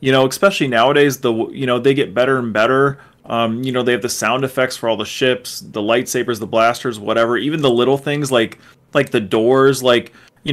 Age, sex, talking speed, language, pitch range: 30-49, male, 220 wpm, English, 120-145 Hz